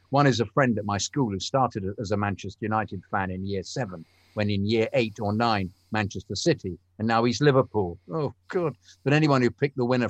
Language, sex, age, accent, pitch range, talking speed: English, male, 50-69, British, 95-120 Hz, 220 wpm